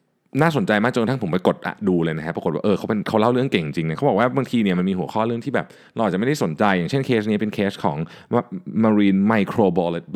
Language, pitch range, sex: Thai, 95-150 Hz, male